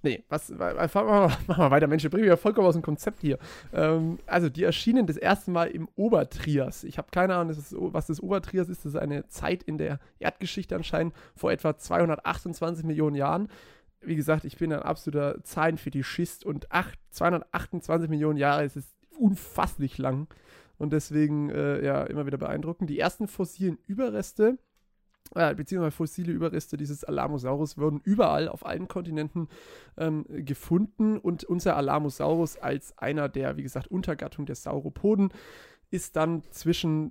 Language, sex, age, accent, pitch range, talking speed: German, male, 20-39, German, 145-180 Hz, 165 wpm